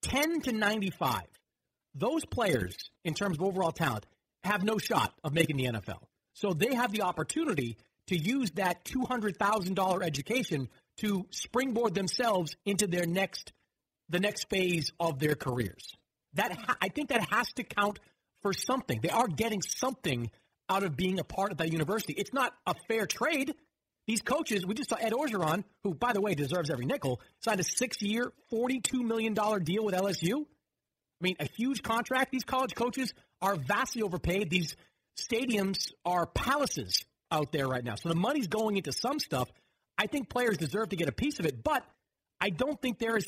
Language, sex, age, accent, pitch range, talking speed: English, male, 40-59, American, 165-230 Hz, 185 wpm